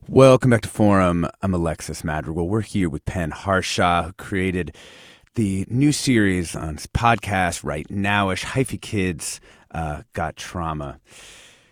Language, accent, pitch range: English, American, 85-115 Hz